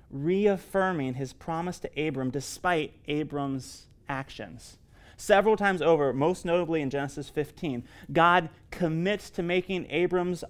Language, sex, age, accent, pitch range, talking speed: English, male, 30-49, American, 135-175 Hz, 120 wpm